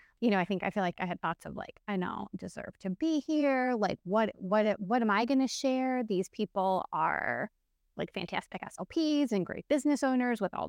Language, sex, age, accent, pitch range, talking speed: English, female, 20-39, American, 180-235 Hz, 220 wpm